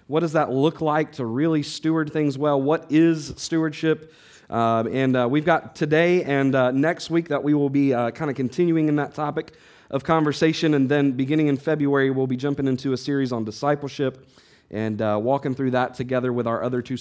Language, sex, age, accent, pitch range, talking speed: English, male, 40-59, American, 115-145 Hz, 205 wpm